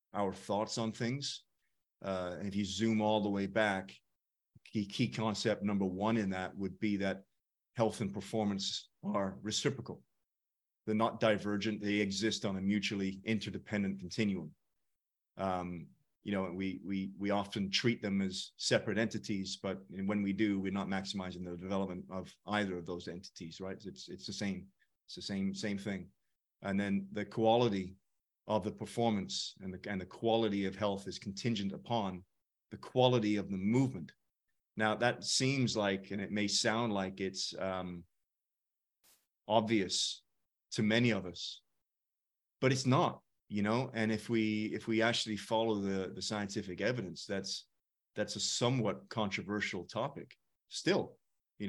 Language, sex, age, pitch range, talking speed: English, male, 30-49, 95-110 Hz, 160 wpm